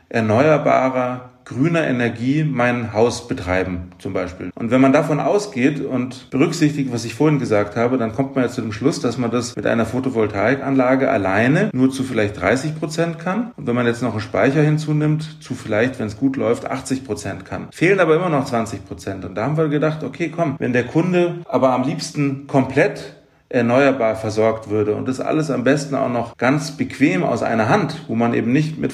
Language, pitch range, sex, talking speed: German, 115-140 Hz, male, 200 wpm